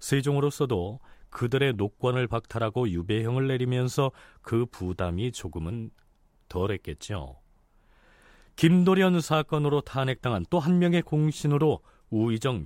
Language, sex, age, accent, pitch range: Korean, male, 40-59, native, 105-155 Hz